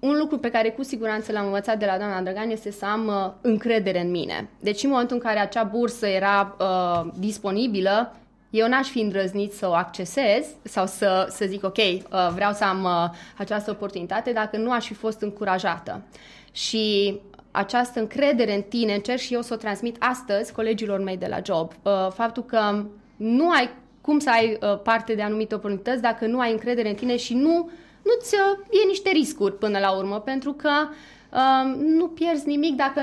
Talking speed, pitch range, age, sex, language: 180 wpm, 200-255 Hz, 20-39, female, Romanian